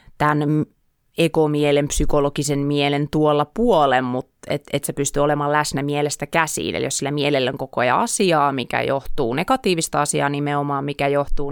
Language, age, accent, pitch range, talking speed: Finnish, 30-49, native, 140-150 Hz, 155 wpm